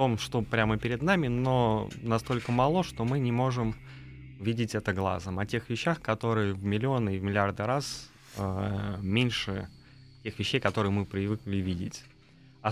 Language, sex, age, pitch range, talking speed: Russian, male, 20-39, 105-135 Hz, 165 wpm